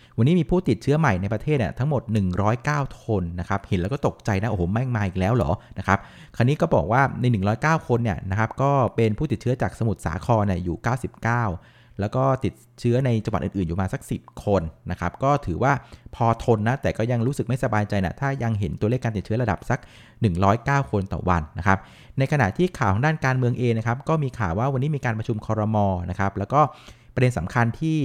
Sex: male